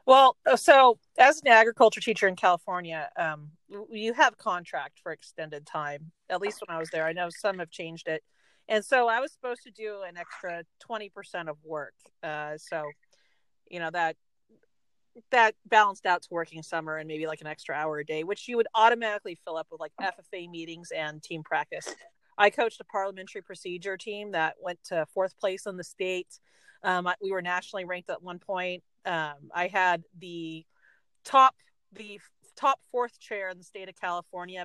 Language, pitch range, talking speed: English, 165-215 Hz, 185 wpm